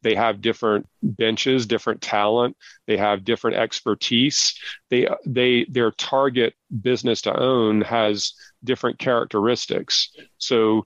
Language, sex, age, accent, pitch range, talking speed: English, male, 40-59, American, 105-120 Hz, 115 wpm